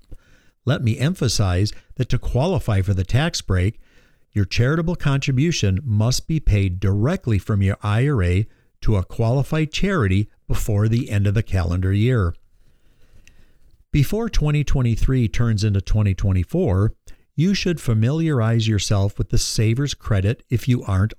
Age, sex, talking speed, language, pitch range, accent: 50-69, male, 135 wpm, English, 100-130 Hz, American